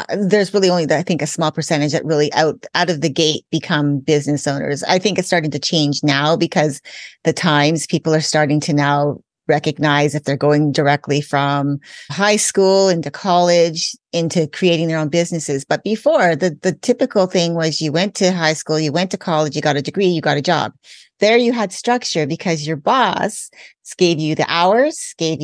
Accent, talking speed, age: American, 200 wpm, 30-49